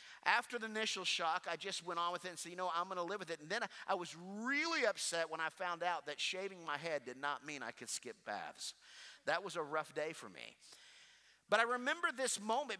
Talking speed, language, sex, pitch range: 250 wpm, English, male, 170-225 Hz